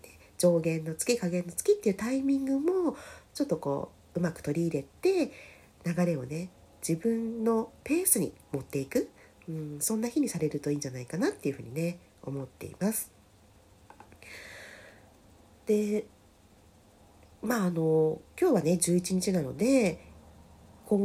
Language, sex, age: Japanese, female, 40-59